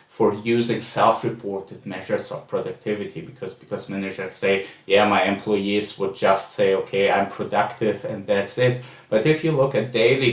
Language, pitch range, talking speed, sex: English, 100-120 Hz, 165 wpm, male